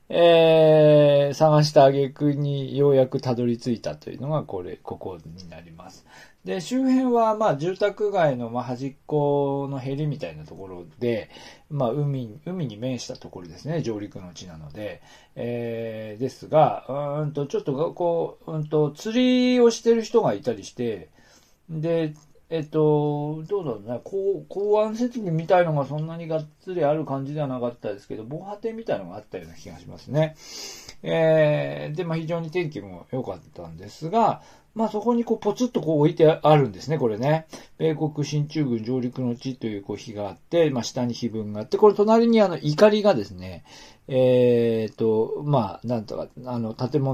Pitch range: 120-165 Hz